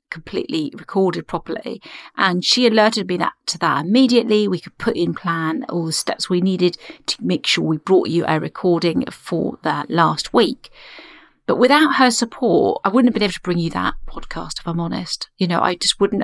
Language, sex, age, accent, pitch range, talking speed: English, female, 40-59, British, 170-255 Hz, 205 wpm